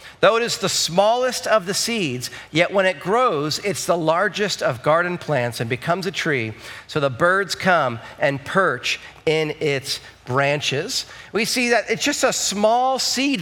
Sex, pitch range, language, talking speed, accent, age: male, 150-195 Hz, English, 175 wpm, American, 40-59